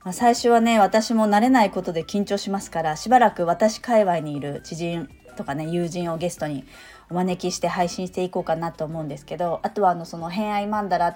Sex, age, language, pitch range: female, 30-49, Japanese, 165-235 Hz